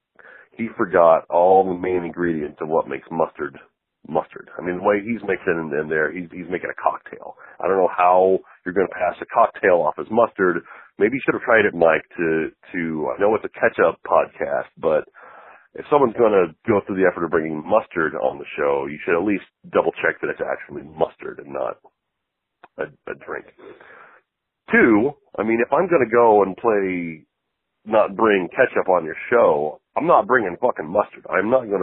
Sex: male